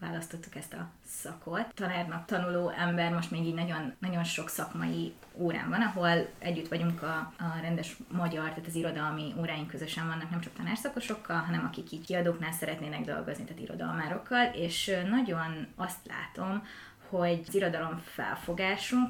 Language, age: Hungarian, 20-39